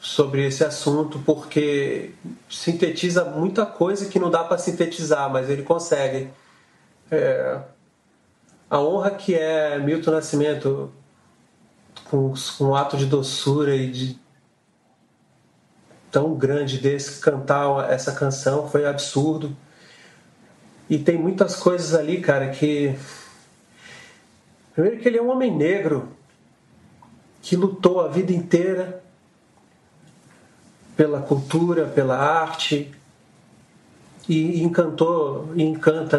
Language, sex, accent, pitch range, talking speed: Portuguese, male, Brazilian, 140-175 Hz, 105 wpm